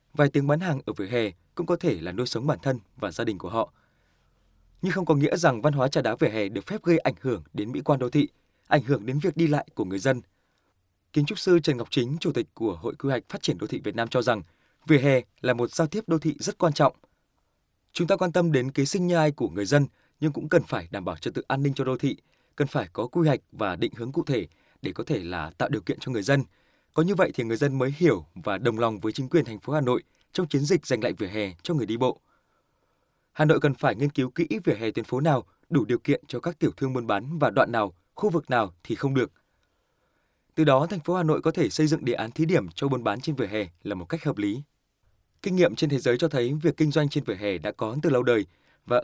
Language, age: Vietnamese, 20-39